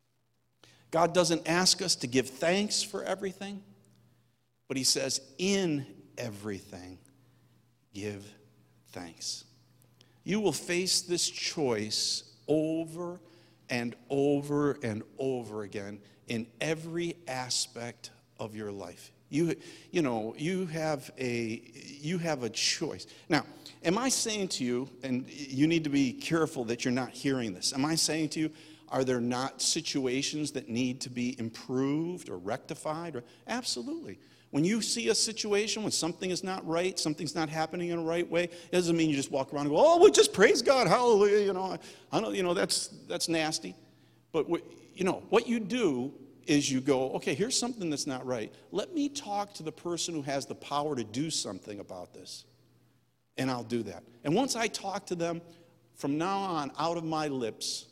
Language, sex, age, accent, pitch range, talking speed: English, male, 50-69, American, 125-175 Hz, 170 wpm